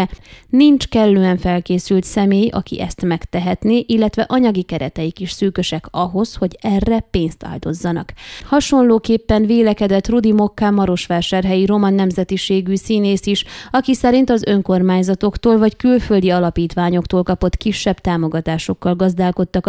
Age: 20-39